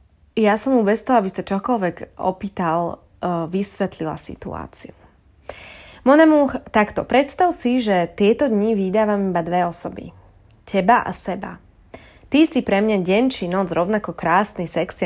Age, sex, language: 20-39, female, Slovak